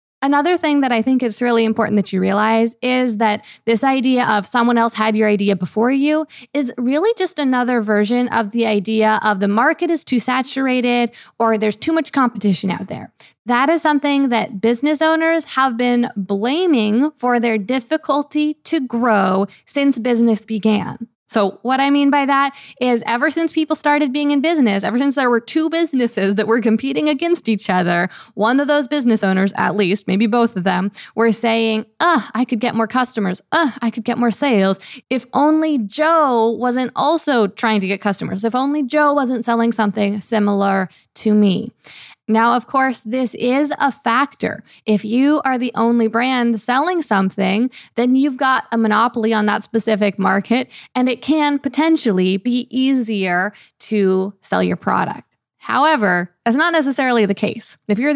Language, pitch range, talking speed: English, 210-270 Hz, 180 wpm